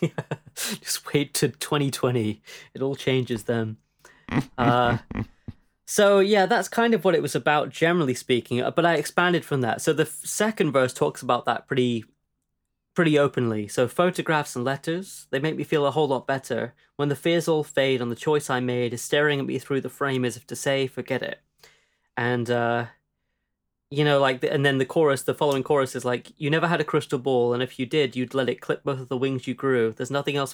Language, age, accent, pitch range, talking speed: English, 20-39, British, 120-155 Hz, 215 wpm